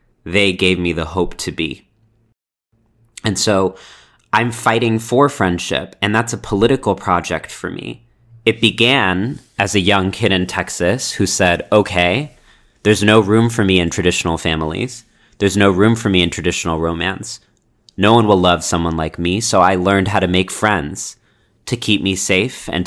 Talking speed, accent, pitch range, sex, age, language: 175 wpm, American, 90-110 Hz, male, 30-49, English